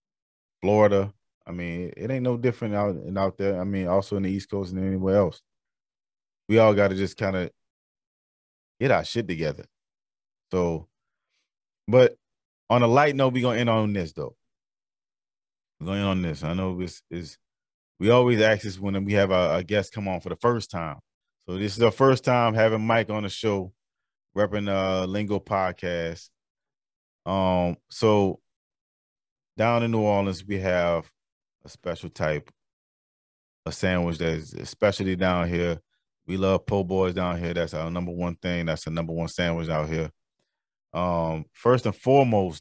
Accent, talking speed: American, 170 wpm